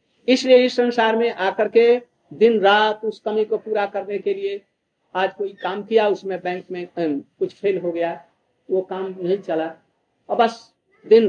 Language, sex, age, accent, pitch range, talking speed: Hindi, male, 50-69, native, 200-250 Hz, 185 wpm